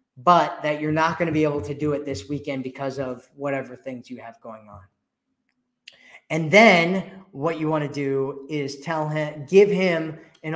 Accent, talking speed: American, 195 wpm